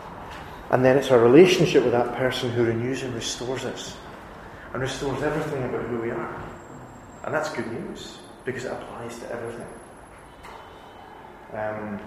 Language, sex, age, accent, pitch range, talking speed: English, male, 30-49, British, 110-130 Hz, 150 wpm